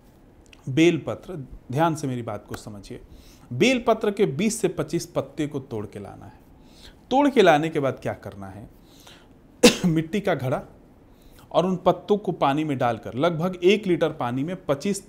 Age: 40-59